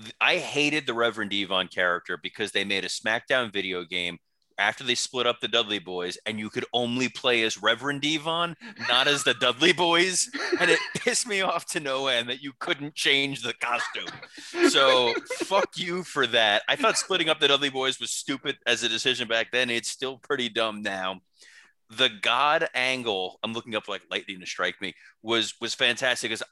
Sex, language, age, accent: male, English, 30-49, American